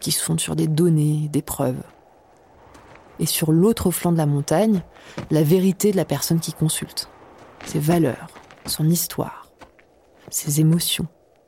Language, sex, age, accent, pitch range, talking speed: French, female, 30-49, French, 160-200 Hz, 145 wpm